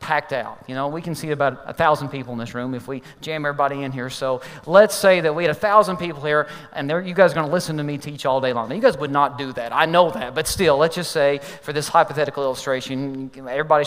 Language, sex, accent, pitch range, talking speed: English, male, American, 140-205 Hz, 275 wpm